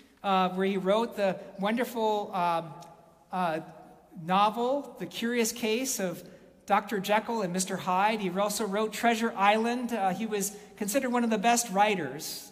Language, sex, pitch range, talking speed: English, male, 170-220 Hz, 155 wpm